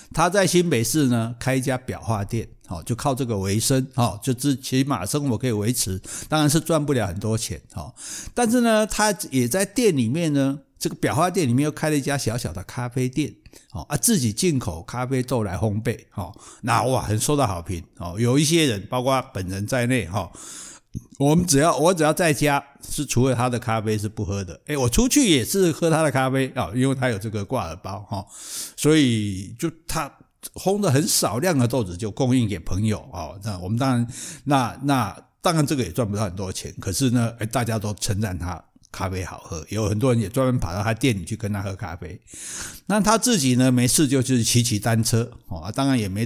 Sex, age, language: male, 60-79, Chinese